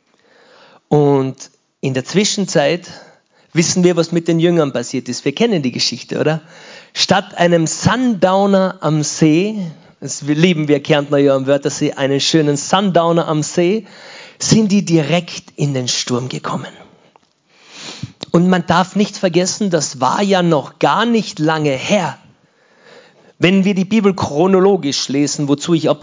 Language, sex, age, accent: German, male, 40-59, German